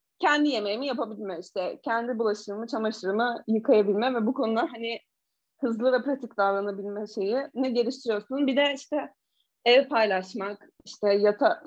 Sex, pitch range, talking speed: female, 205-250 Hz, 135 wpm